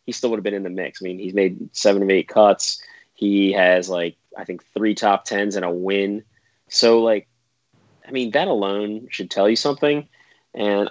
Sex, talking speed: male, 210 wpm